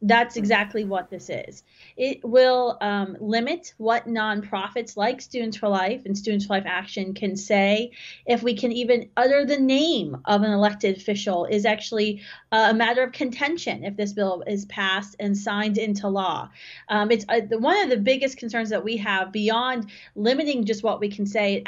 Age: 30-49